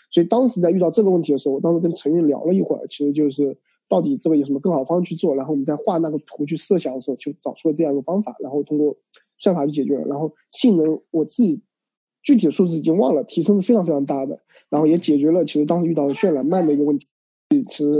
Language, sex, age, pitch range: Chinese, male, 20-39, 145-170 Hz